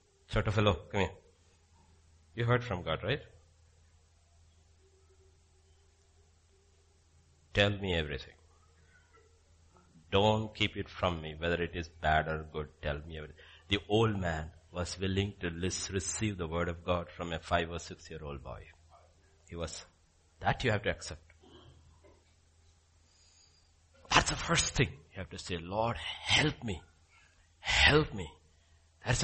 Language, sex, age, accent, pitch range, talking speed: English, male, 60-79, Indian, 80-110 Hz, 135 wpm